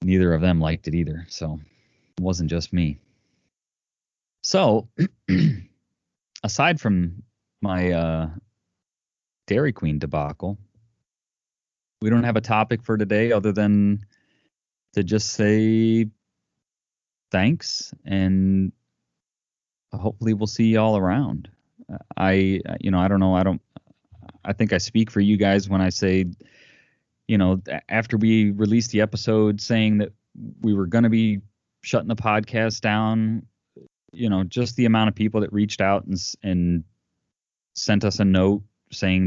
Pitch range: 95-110 Hz